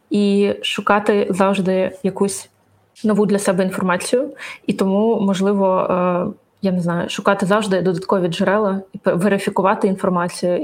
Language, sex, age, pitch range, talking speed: Ukrainian, female, 20-39, 185-210 Hz, 120 wpm